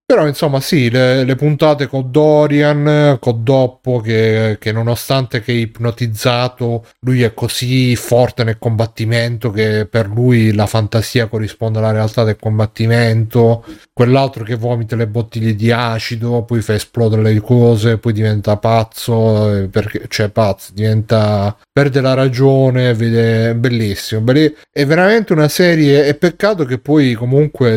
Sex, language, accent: male, Italian, native